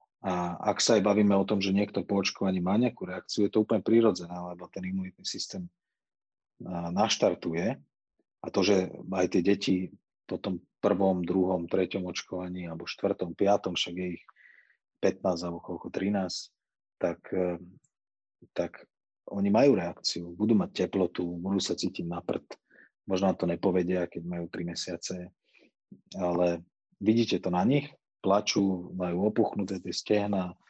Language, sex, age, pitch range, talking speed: Slovak, male, 40-59, 90-100 Hz, 145 wpm